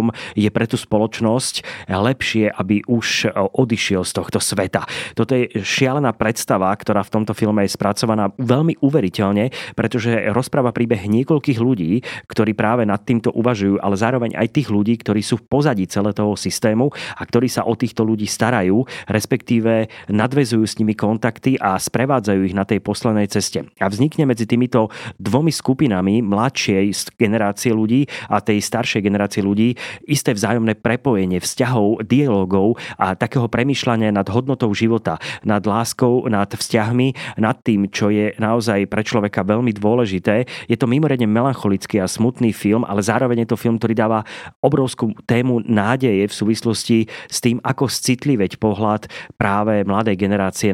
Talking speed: 155 wpm